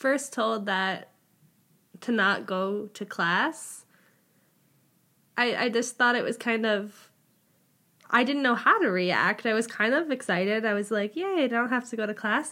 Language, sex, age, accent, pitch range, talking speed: English, female, 10-29, American, 190-235 Hz, 180 wpm